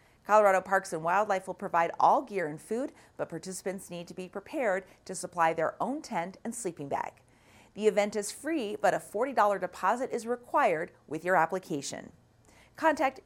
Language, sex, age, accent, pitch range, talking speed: English, female, 40-59, American, 175-235 Hz, 170 wpm